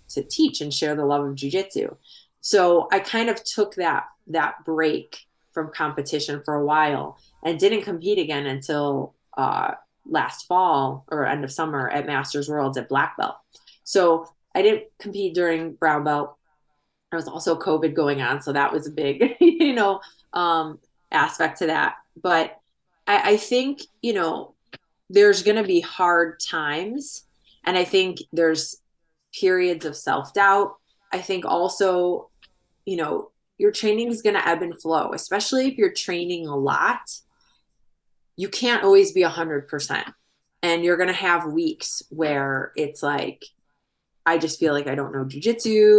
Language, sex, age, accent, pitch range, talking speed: English, female, 20-39, American, 150-195 Hz, 165 wpm